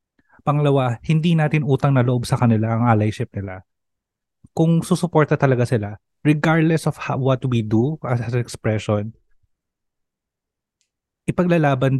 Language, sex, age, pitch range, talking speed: Filipino, male, 20-39, 115-160 Hz, 125 wpm